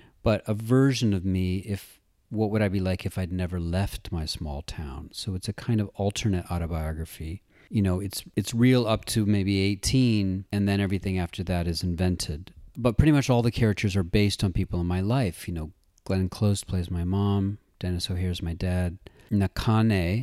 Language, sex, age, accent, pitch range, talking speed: English, male, 40-59, American, 90-115 Hz, 195 wpm